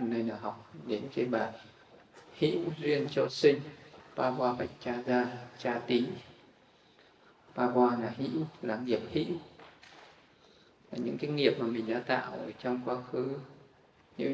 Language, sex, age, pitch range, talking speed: Vietnamese, male, 20-39, 120-145 Hz, 145 wpm